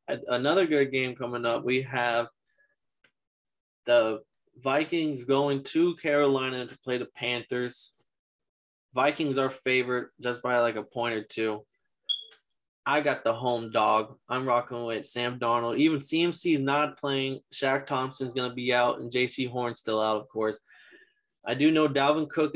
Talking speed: 155 wpm